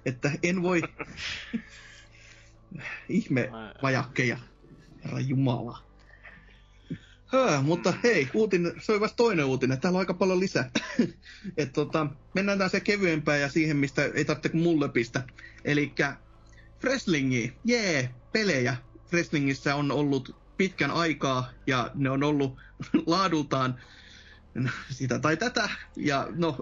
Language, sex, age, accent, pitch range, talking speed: Finnish, male, 30-49, native, 135-190 Hz, 115 wpm